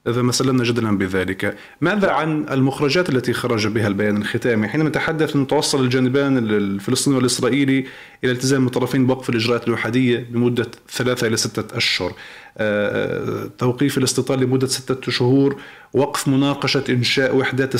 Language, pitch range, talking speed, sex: Arabic, 120-140 Hz, 130 wpm, male